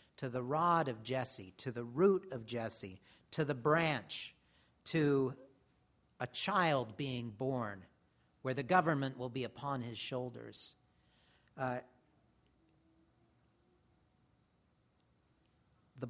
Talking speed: 105 wpm